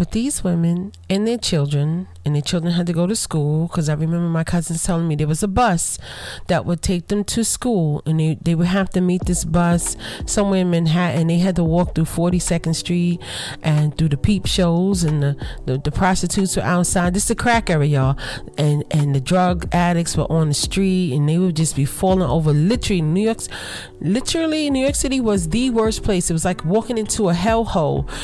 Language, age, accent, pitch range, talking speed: English, 30-49, American, 145-185 Hz, 220 wpm